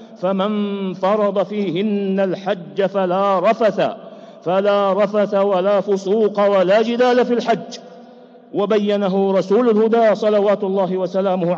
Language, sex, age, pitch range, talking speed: English, male, 50-69, 175-220 Hz, 105 wpm